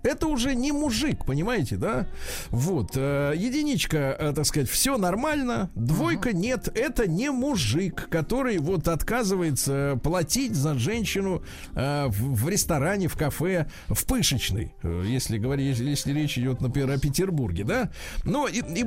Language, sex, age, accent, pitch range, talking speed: Russian, male, 50-69, native, 140-210 Hz, 125 wpm